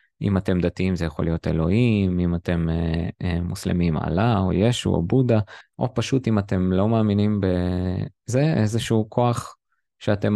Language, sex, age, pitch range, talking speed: Hebrew, male, 20-39, 90-110 Hz, 155 wpm